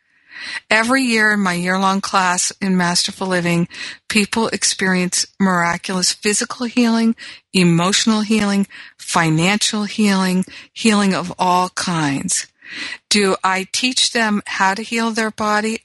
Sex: female